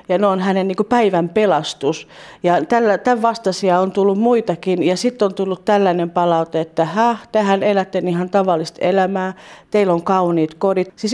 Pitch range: 165-190 Hz